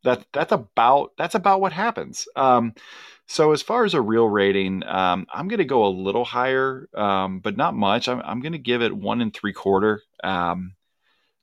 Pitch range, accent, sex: 100-125 Hz, American, male